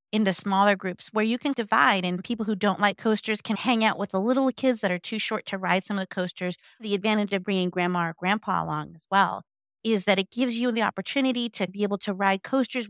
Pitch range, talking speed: 190-235 Hz, 245 wpm